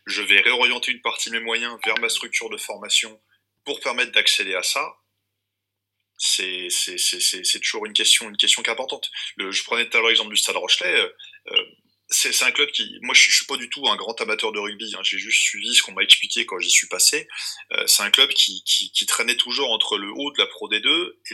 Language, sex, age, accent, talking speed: French, male, 20-39, French, 245 wpm